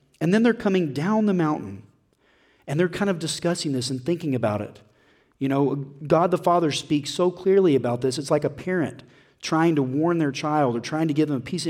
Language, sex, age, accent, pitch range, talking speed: English, male, 40-59, American, 140-185 Hz, 225 wpm